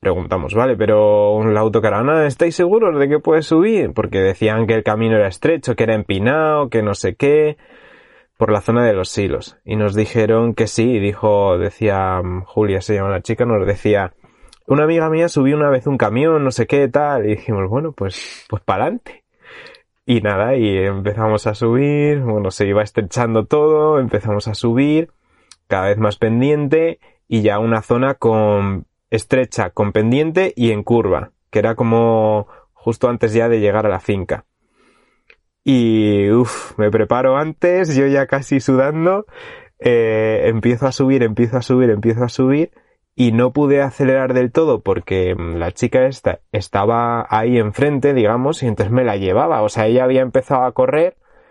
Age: 20-39